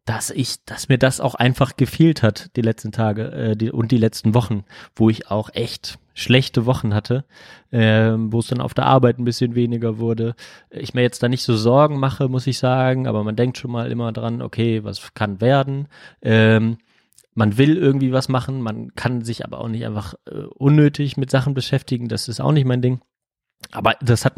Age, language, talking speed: 30-49, German, 210 wpm